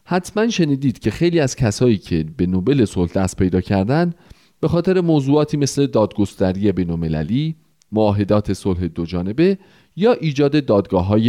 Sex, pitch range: male, 95-155 Hz